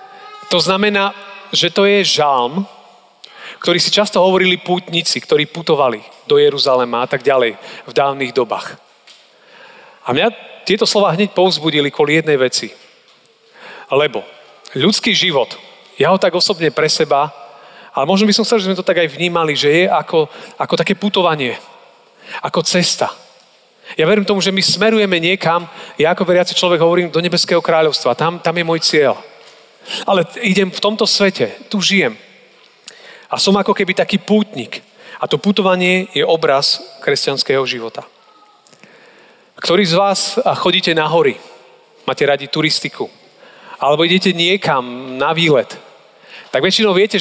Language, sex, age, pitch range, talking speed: Slovak, male, 40-59, 160-205 Hz, 145 wpm